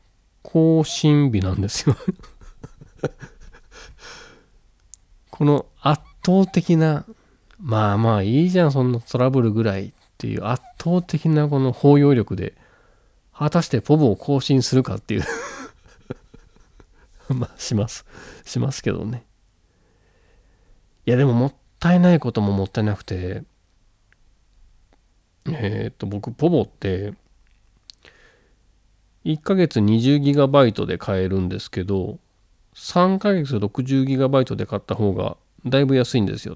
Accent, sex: native, male